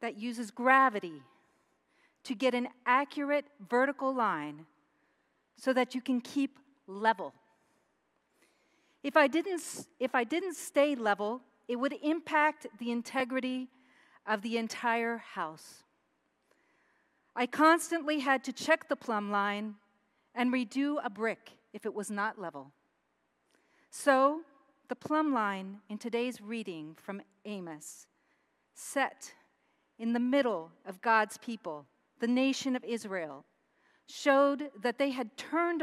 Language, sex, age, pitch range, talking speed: English, female, 40-59, 200-270 Hz, 120 wpm